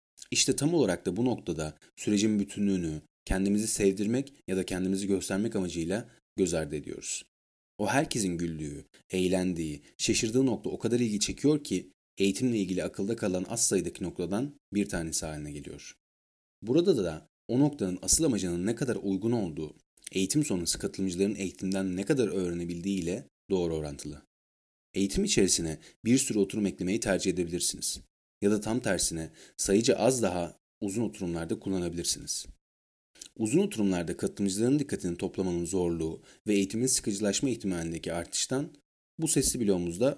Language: Turkish